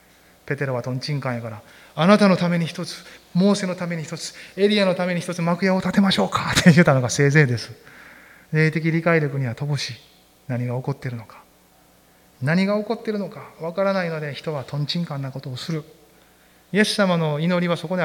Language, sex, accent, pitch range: Japanese, male, native, 125-175 Hz